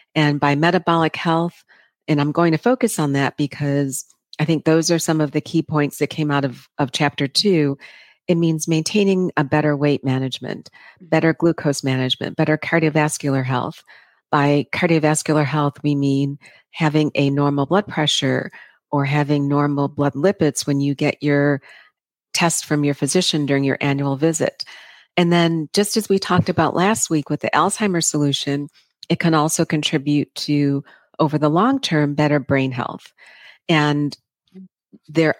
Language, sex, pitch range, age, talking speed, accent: English, female, 145-170 Hz, 40-59, 160 wpm, American